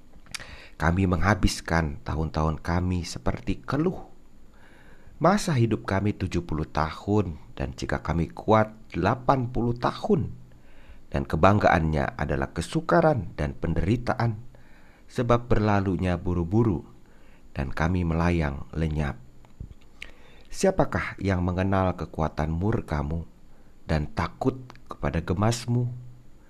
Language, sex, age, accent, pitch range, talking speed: Indonesian, male, 40-59, native, 80-120 Hz, 90 wpm